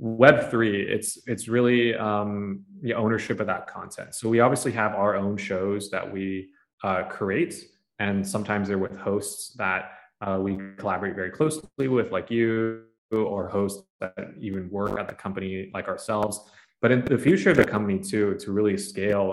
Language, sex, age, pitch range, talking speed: Vietnamese, male, 20-39, 95-110 Hz, 175 wpm